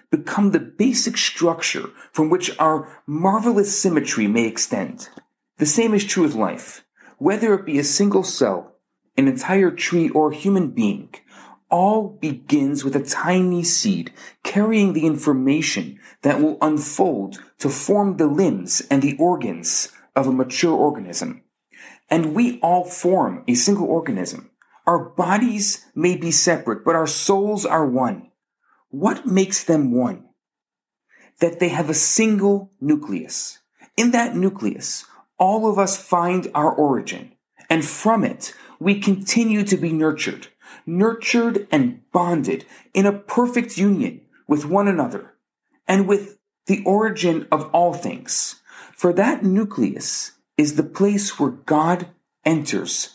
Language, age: English, 40-59